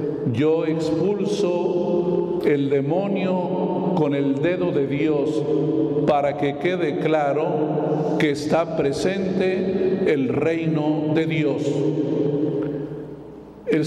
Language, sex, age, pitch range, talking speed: Spanish, male, 50-69, 145-180 Hz, 90 wpm